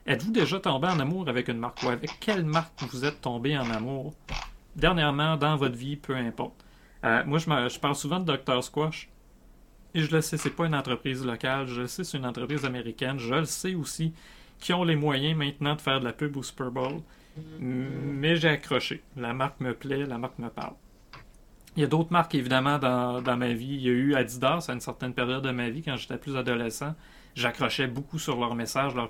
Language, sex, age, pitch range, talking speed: French, male, 30-49, 125-150 Hz, 235 wpm